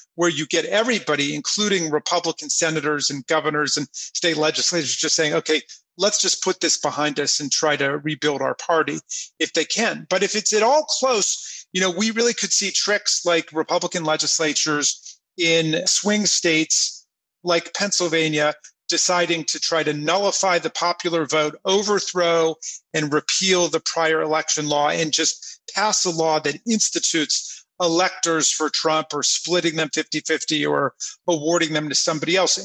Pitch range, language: 155-185 Hz, English